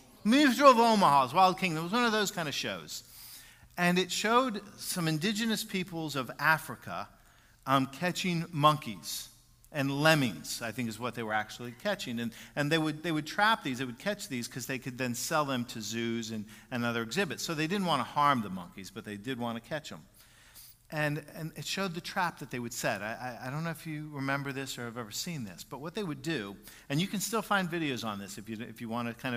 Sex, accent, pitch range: male, American, 120-165 Hz